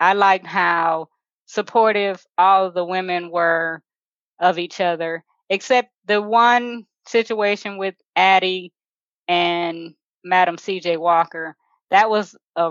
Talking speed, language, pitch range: 120 wpm, English, 185-215 Hz